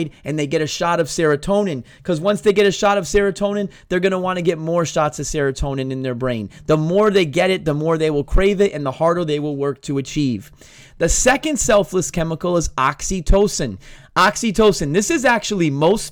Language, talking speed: English, 210 wpm